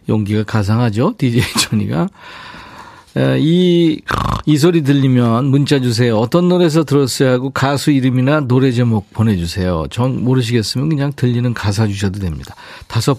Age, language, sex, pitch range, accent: 40-59, Korean, male, 100-140 Hz, native